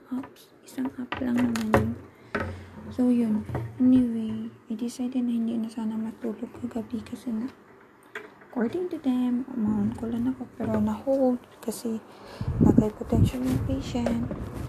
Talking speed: 135 wpm